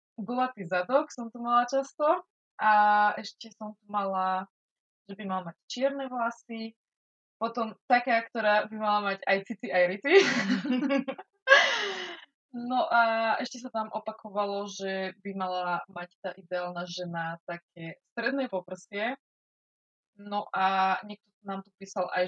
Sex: female